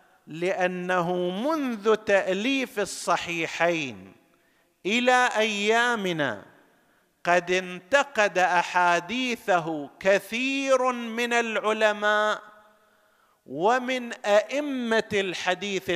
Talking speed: 55 wpm